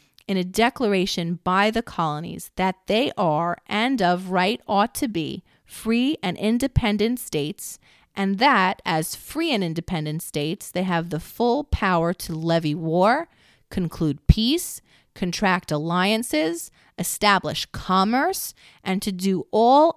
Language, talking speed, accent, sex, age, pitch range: English, 130 wpm, American, female, 30-49, 165-215 Hz